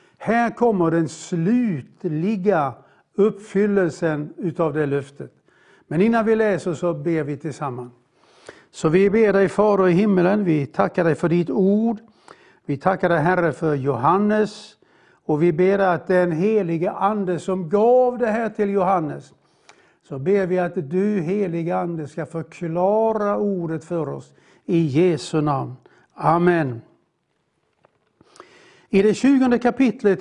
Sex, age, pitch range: male, 60-79, 165-210 Hz